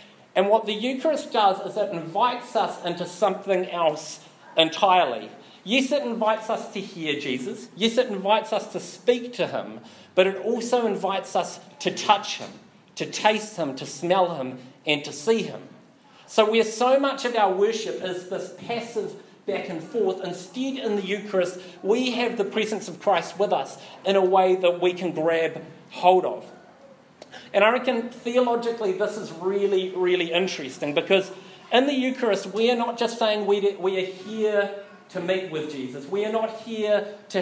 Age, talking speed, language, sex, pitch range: 40-59, 180 wpm, English, male, 175-215 Hz